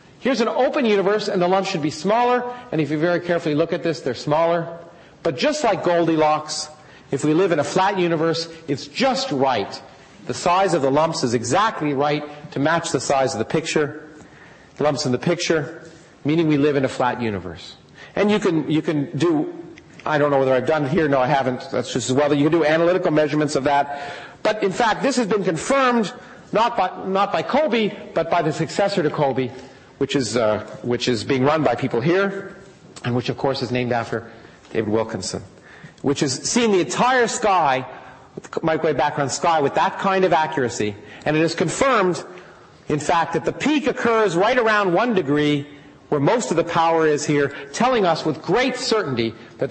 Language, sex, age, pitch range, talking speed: English, male, 40-59, 140-185 Hz, 200 wpm